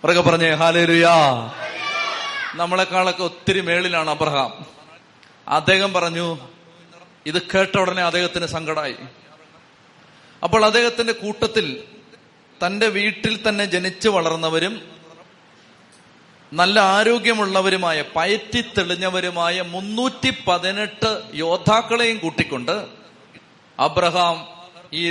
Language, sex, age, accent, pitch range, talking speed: Malayalam, male, 30-49, native, 170-210 Hz, 75 wpm